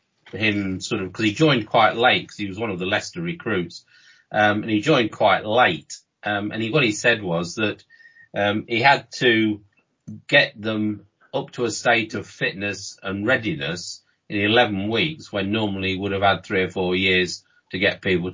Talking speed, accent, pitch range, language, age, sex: 195 wpm, British, 95-115 Hz, English, 40-59, male